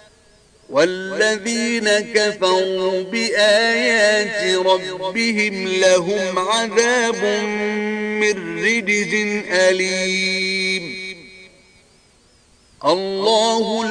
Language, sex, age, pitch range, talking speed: Arabic, male, 50-69, 205-230 Hz, 45 wpm